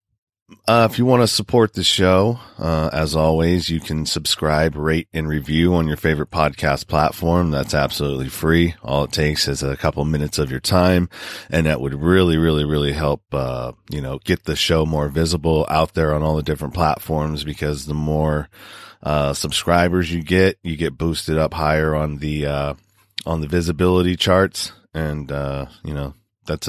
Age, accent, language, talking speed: 30-49, American, English, 180 wpm